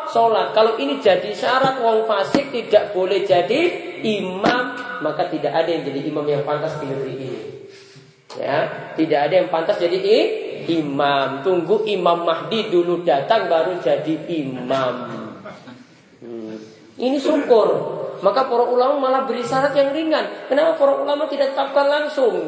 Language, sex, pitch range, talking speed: Malay, male, 175-270 Hz, 140 wpm